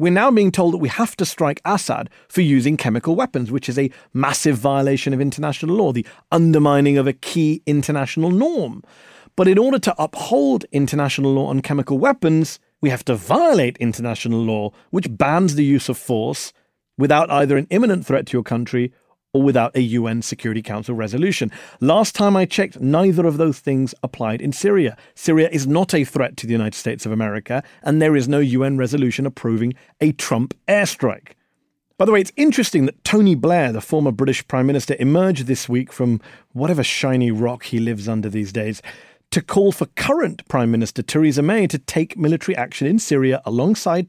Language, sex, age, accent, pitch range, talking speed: English, male, 40-59, British, 125-175 Hz, 190 wpm